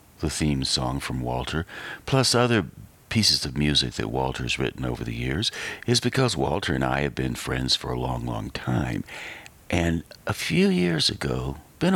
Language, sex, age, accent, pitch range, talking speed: English, male, 60-79, American, 65-90 Hz, 175 wpm